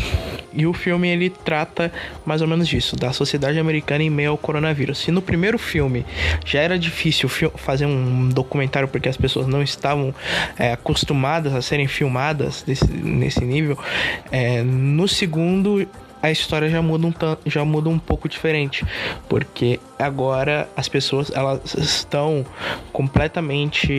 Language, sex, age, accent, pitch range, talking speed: Portuguese, male, 20-39, Brazilian, 135-160 Hz, 135 wpm